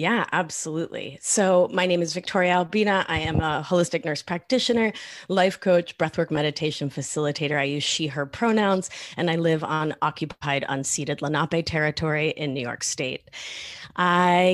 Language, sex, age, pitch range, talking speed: English, female, 30-49, 150-185 Hz, 155 wpm